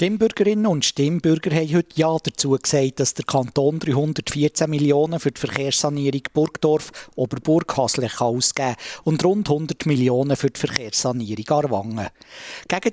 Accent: Austrian